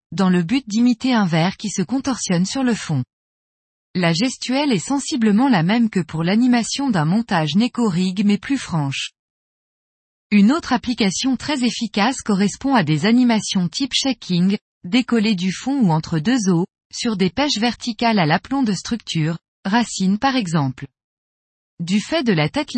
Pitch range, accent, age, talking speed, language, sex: 180-245 Hz, French, 20-39, 160 wpm, French, female